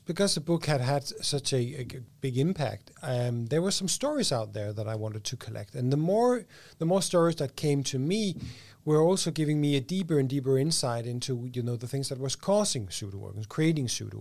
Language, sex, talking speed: English, male, 230 wpm